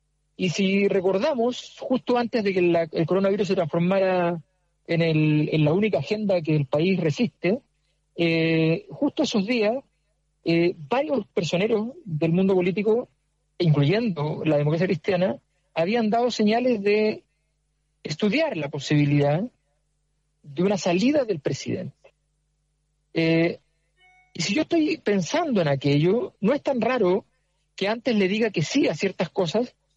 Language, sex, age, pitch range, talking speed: Spanish, male, 50-69, 155-210 Hz, 135 wpm